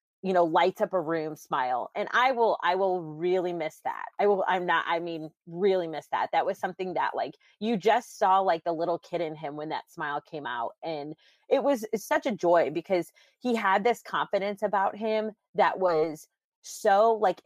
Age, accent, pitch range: 30-49, American, 165-205 Hz